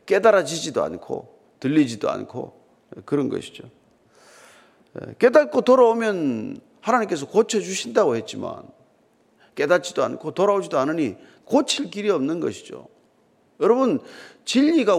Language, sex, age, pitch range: Korean, male, 40-59, 170-255 Hz